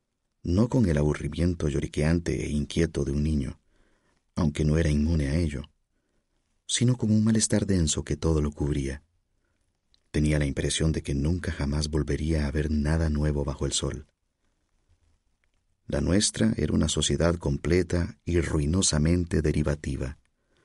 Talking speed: 140 wpm